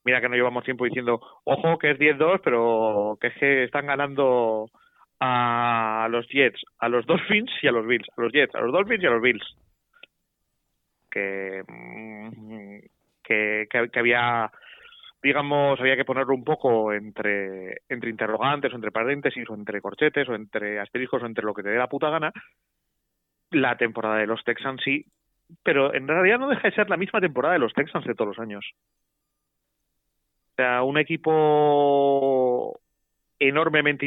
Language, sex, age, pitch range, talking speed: Spanish, male, 30-49, 115-140 Hz, 170 wpm